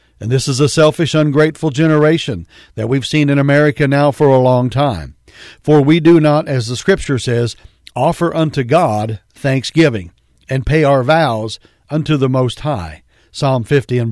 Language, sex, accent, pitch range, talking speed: English, male, American, 120-150 Hz, 170 wpm